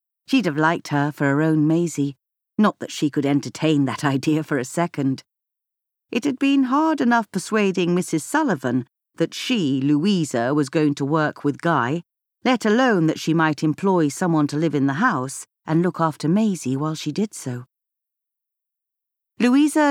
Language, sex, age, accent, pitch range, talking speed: English, female, 40-59, British, 145-185 Hz, 170 wpm